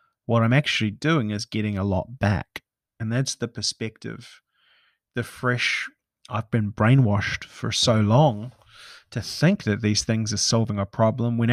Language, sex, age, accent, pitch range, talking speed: English, male, 30-49, Australian, 110-140 Hz, 160 wpm